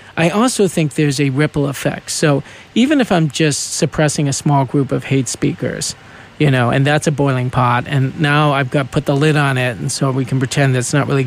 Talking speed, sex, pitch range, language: 235 wpm, male, 130-160 Hz, English